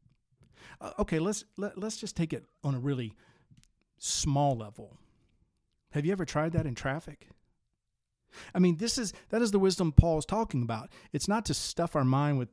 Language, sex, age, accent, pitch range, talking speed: English, male, 40-59, American, 115-160 Hz, 175 wpm